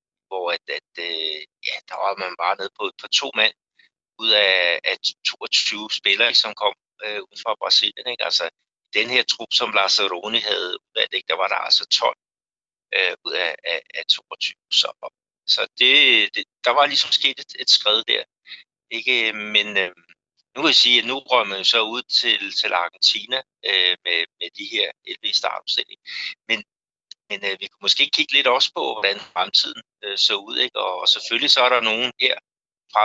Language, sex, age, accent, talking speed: Danish, male, 60-79, native, 185 wpm